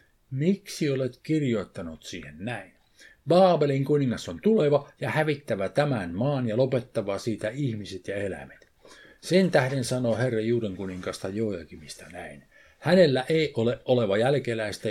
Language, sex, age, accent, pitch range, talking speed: Finnish, male, 50-69, native, 105-145 Hz, 130 wpm